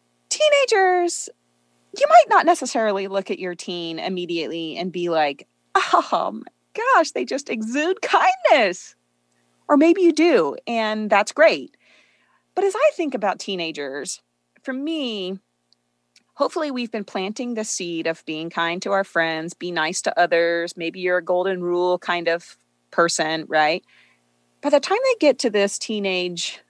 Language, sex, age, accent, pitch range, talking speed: English, female, 30-49, American, 165-240 Hz, 155 wpm